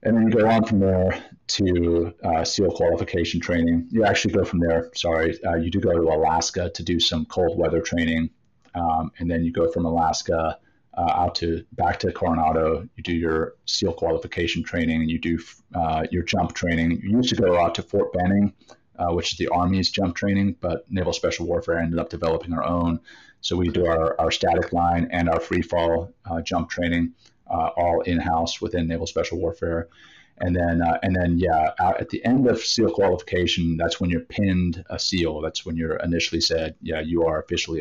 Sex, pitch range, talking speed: male, 85-90 Hz, 205 wpm